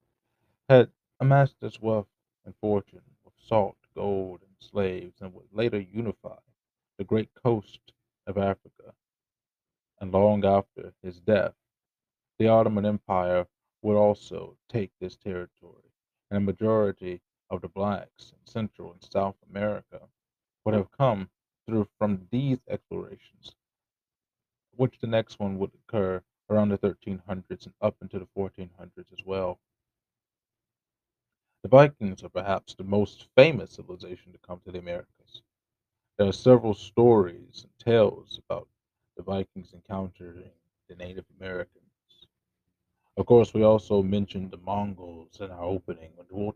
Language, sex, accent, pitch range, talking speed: English, male, American, 95-115 Hz, 135 wpm